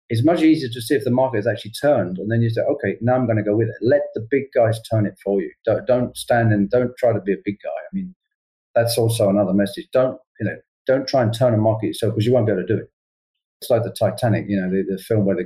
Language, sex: English, male